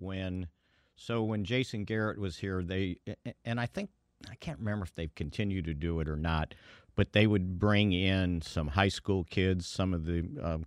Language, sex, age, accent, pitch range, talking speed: English, male, 50-69, American, 85-105 Hz, 195 wpm